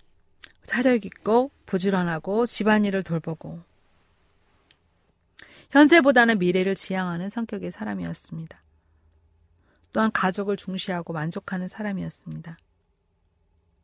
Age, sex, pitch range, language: 40-59, female, 155-220 Hz, Korean